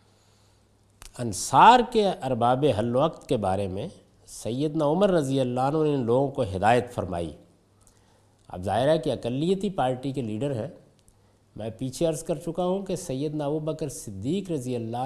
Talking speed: 165 wpm